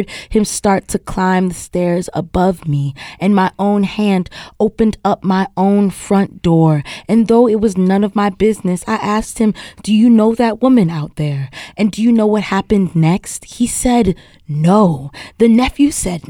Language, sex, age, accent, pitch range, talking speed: English, female, 20-39, American, 185-245 Hz, 180 wpm